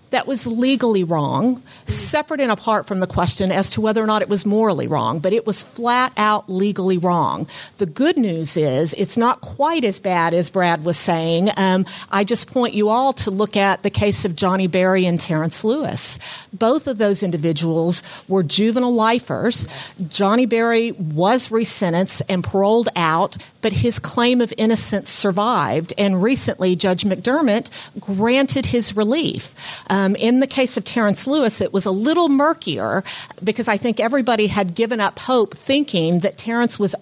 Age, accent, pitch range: 50-69, American, 185-235 Hz